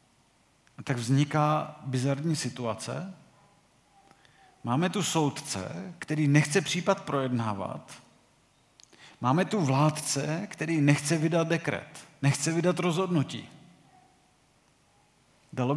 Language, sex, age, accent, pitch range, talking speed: Czech, male, 40-59, native, 130-160 Hz, 85 wpm